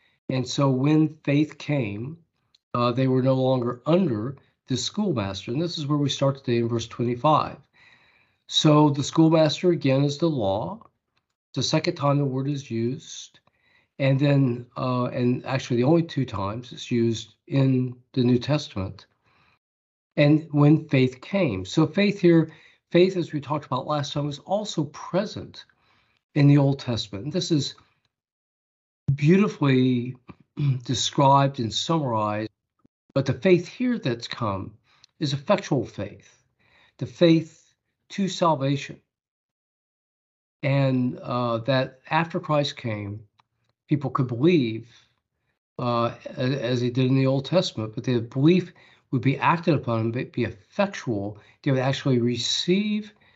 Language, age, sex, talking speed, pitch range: English, 50-69, male, 135 wpm, 120-155 Hz